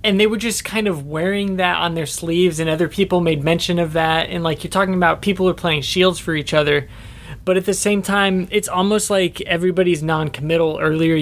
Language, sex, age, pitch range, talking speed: English, male, 20-39, 145-180 Hz, 220 wpm